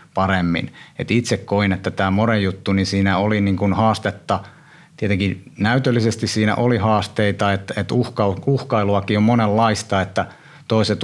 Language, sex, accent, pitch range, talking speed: Finnish, male, native, 95-110 Hz, 145 wpm